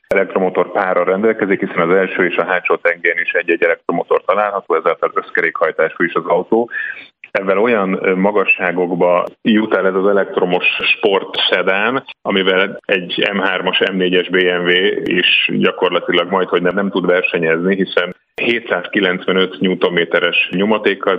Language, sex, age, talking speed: Hungarian, male, 30-49, 125 wpm